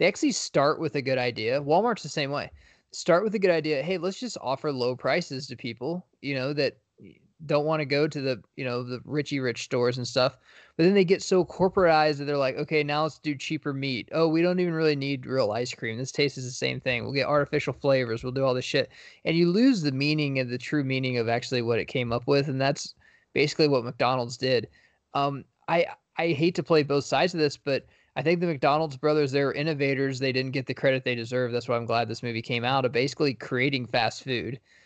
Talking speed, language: 240 wpm, English